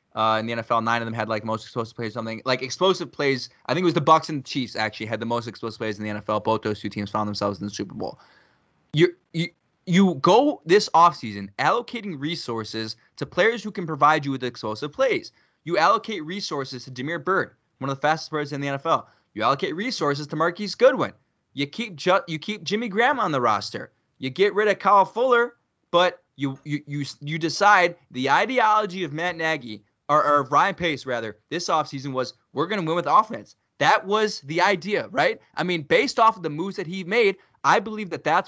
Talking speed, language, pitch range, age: 220 wpm, English, 125-185 Hz, 20-39